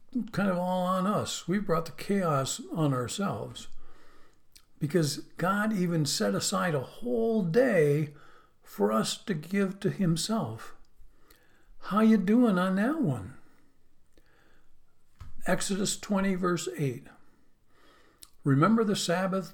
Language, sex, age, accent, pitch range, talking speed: English, male, 60-79, American, 140-190 Hz, 115 wpm